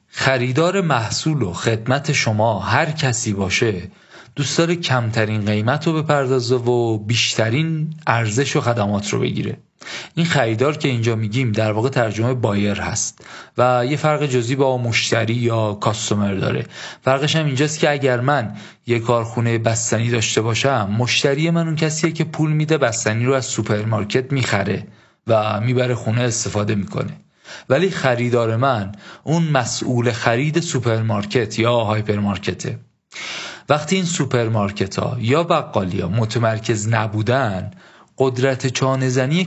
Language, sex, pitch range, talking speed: Persian, male, 110-135 Hz, 135 wpm